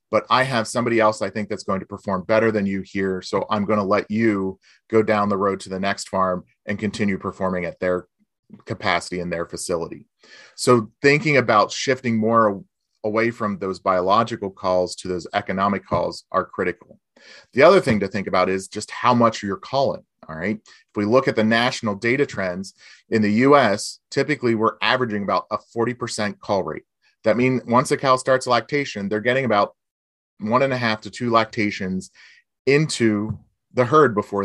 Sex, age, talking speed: male, 30-49, 190 wpm